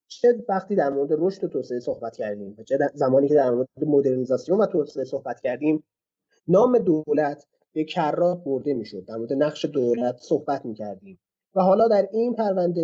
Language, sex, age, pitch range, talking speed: Persian, male, 30-49, 130-180 Hz, 175 wpm